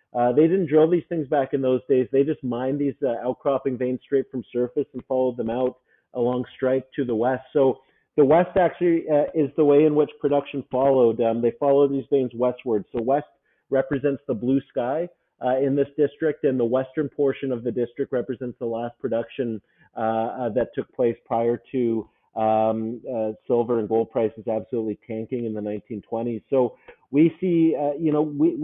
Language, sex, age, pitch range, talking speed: English, male, 40-59, 120-145 Hz, 195 wpm